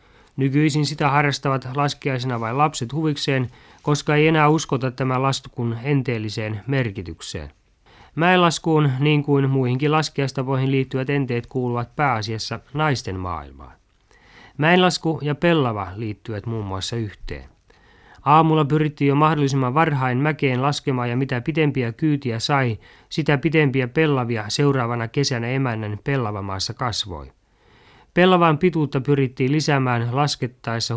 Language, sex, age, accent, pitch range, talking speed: Finnish, male, 30-49, native, 115-145 Hz, 115 wpm